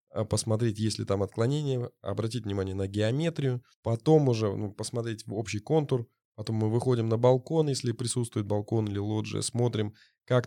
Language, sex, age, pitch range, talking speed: Russian, male, 20-39, 105-125 Hz, 160 wpm